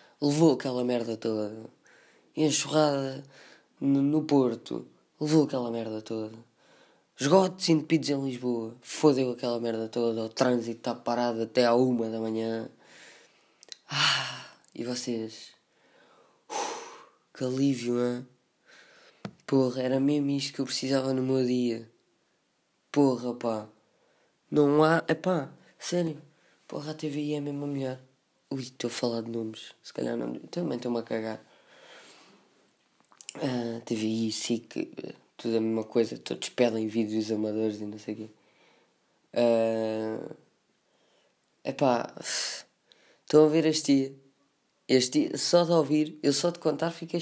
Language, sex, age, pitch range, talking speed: Portuguese, female, 20-39, 115-155 Hz, 135 wpm